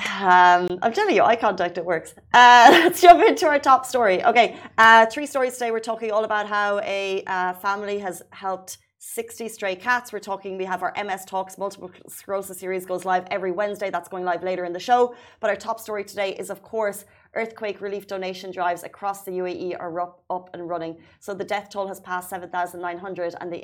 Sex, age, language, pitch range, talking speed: female, 30-49, Arabic, 175-195 Hz, 210 wpm